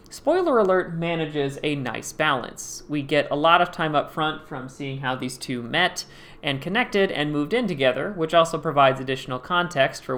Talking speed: 190 wpm